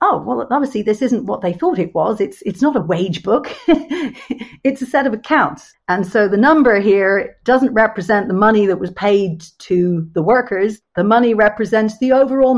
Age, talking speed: 50-69, 195 wpm